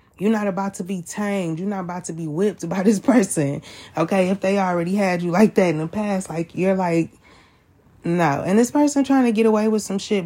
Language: English